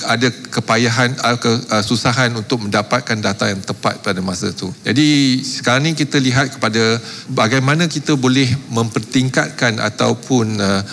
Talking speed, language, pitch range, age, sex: 120 wpm, Malay, 110-135 Hz, 40-59, male